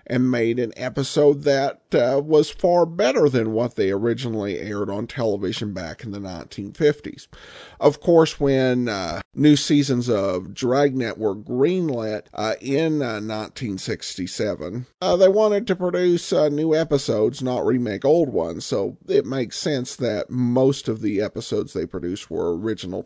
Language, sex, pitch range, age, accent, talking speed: English, male, 125-165 Hz, 50-69, American, 155 wpm